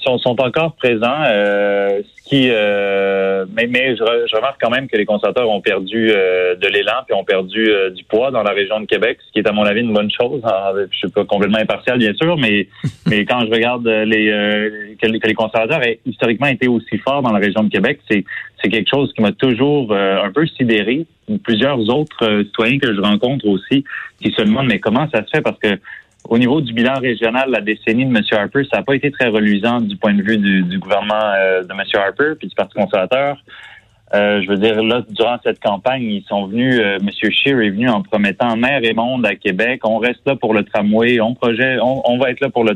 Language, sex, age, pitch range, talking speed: French, male, 30-49, 105-125 Hz, 240 wpm